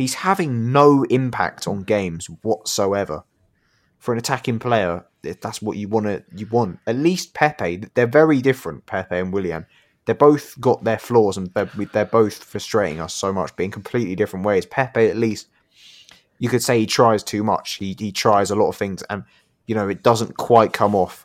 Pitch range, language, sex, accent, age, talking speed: 90-115 Hz, English, male, British, 20-39, 200 wpm